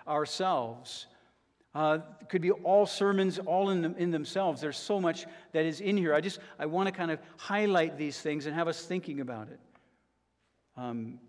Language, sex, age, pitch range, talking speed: English, male, 50-69, 150-190 Hz, 185 wpm